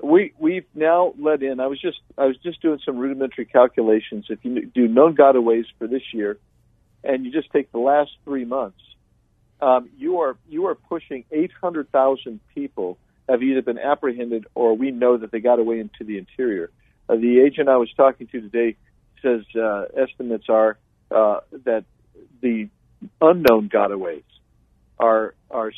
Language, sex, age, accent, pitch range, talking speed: English, male, 50-69, American, 115-140 Hz, 170 wpm